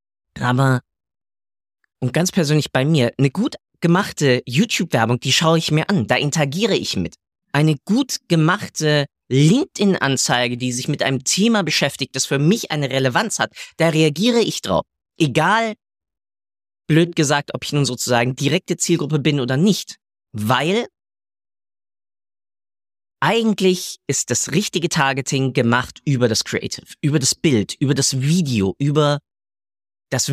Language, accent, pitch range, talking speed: German, German, 120-175 Hz, 135 wpm